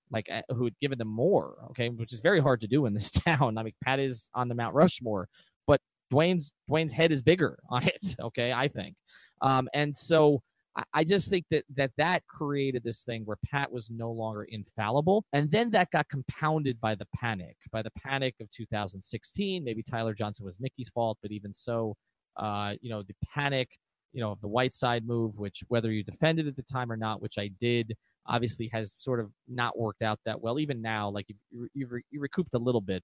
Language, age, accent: English, 30-49, American